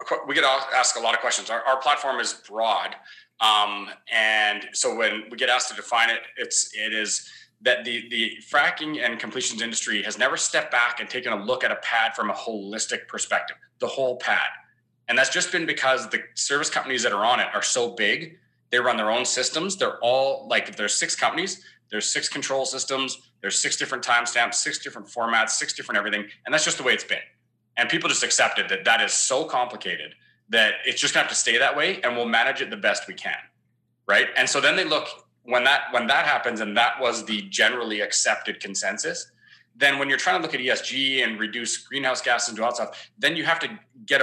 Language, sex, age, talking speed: English, male, 30-49, 225 wpm